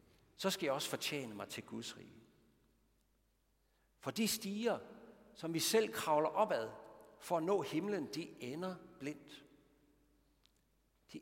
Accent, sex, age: native, male, 60-79